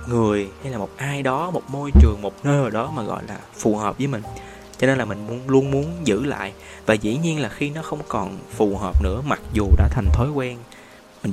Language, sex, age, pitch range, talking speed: Vietnamese, male, 20-39, 105-140 Hz, 250 wpm